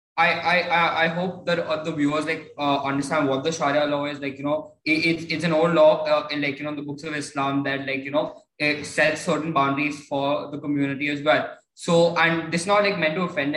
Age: 20-39